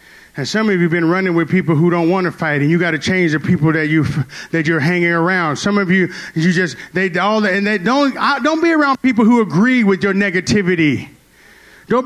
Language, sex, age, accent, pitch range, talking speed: English, male, 30-49, American, 175-255 Hz, 245 wpm